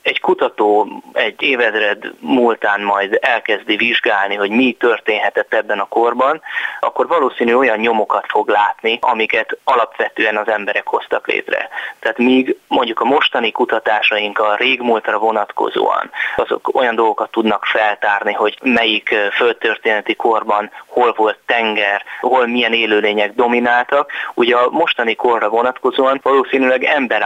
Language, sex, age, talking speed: Hungarian, male, 20-39, 130 wpm